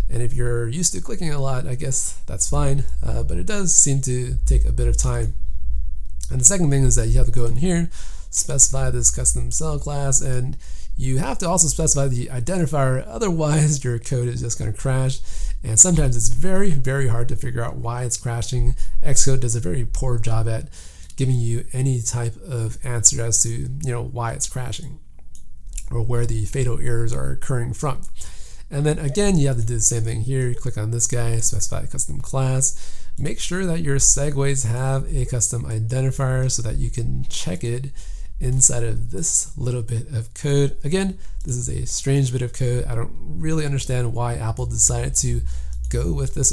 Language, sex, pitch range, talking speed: English, male, 115-140 Hz, 200 wpm